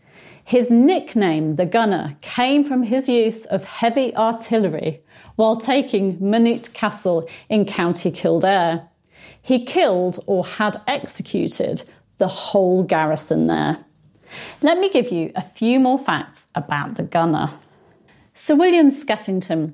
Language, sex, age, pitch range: English, female, 40-59, 170-235 Hz